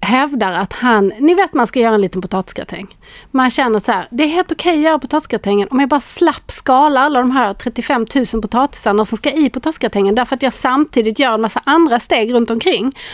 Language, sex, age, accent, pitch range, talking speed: English, female, 30-49, Swedish, 225-300 Hz, 220 wpm